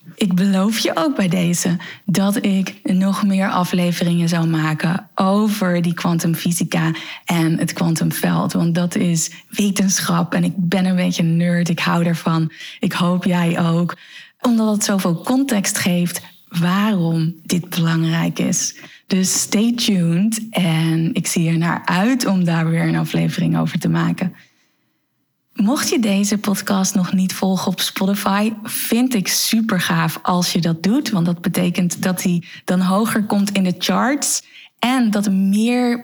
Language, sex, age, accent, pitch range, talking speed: Dutch, female, 20-39, Dutch, 170-200 Hz, 155 wpm